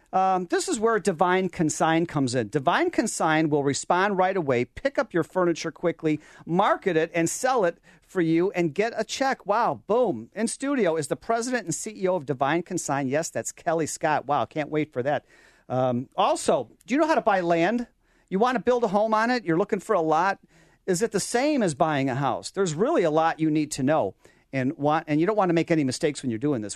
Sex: male